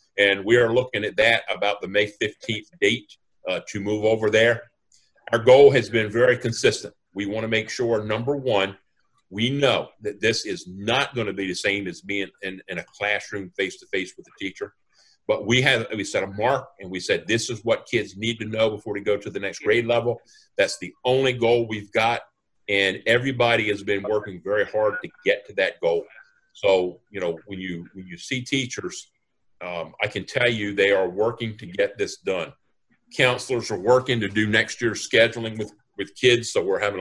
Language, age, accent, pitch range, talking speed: English, 50-69, American, 105-125 Hz, 210 wpm